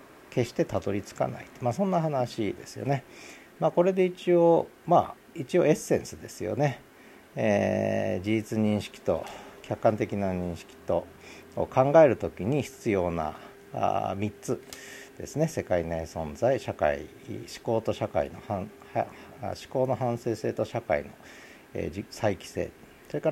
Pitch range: 105-140 Hz